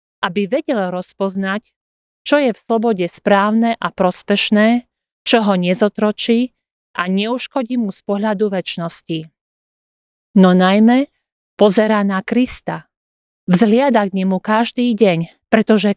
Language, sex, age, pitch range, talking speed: Slovak, female, 40-59, 190-235 Hz, 115 wpm